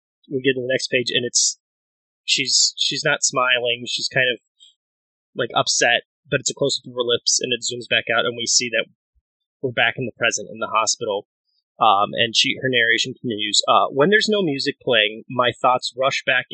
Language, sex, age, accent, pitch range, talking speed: English, male, 20-39, American, 120-180 Hz, 210 wpm